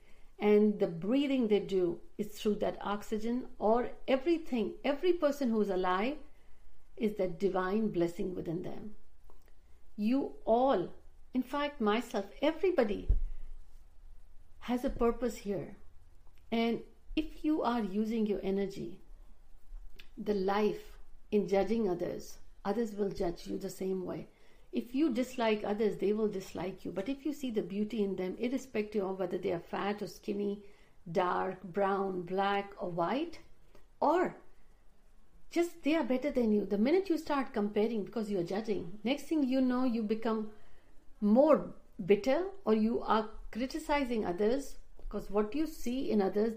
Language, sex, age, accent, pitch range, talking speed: Hindi, female, 60-79, native, 195-255 Hz, 150 wpm